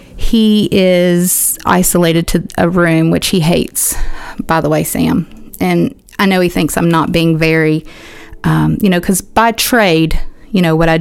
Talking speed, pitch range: 175 wpm, 160-190 Hz